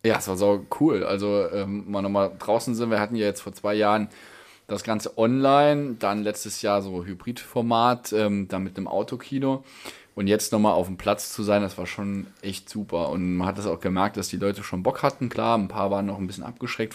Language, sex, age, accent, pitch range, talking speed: German, male, 20-39, German, 95-105 Hz, 225 wpm